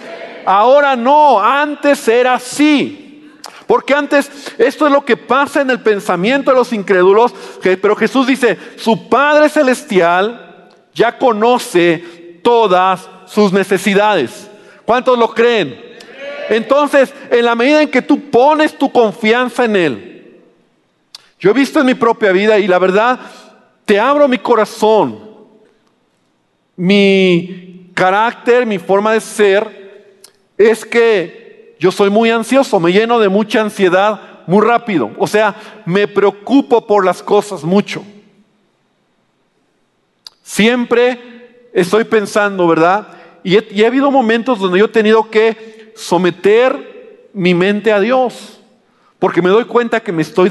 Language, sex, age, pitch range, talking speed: Spanish, male, 50-69, 200-255 Hz, 130 wpm